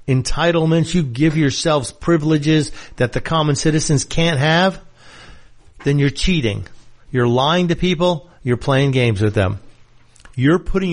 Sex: male